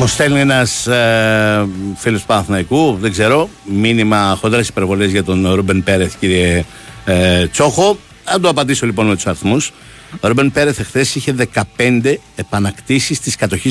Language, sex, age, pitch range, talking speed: Greek, male, 60-79, 100-125 Hz, 155 wpm